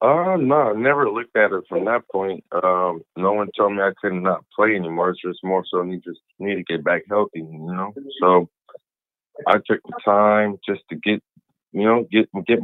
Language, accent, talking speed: English, American, 215 wpm